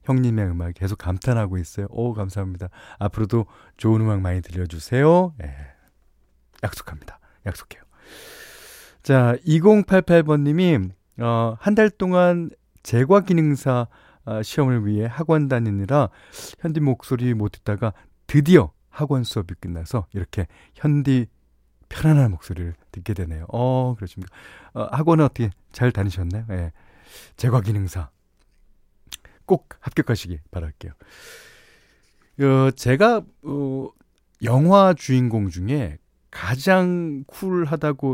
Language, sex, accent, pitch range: Korean, male, native, 90-145 Hz